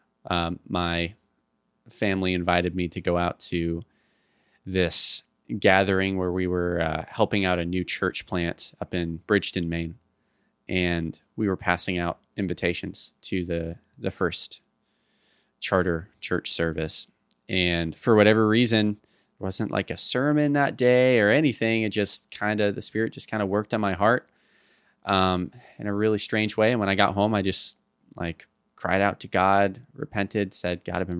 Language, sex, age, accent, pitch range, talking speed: English, male, 20-39, American, 90-105 Hz, 165 wpm